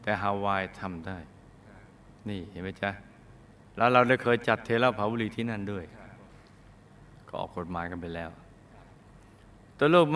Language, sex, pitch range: Thai, male, 100-135 Hz